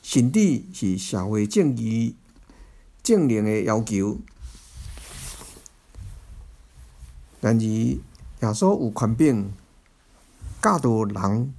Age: 60-79